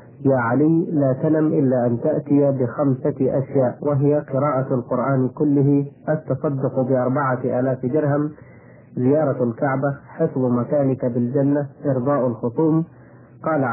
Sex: male